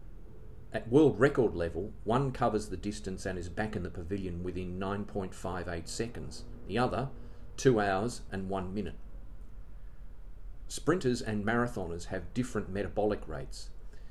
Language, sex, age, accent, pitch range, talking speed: English, male, 40-59, Australian, 95-115 Hz, 130 wpm